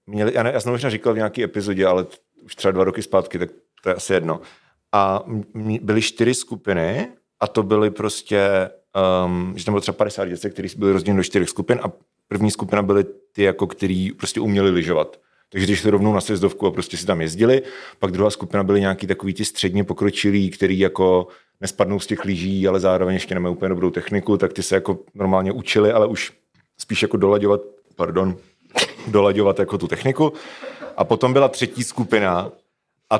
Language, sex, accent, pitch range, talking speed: Czech, male, native, 95-115 Hz, 195 wpm